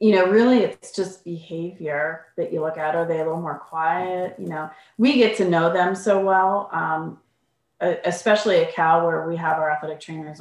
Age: 30-49